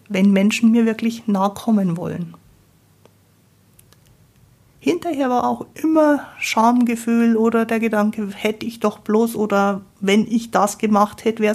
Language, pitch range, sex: German, 190-230 Hz, female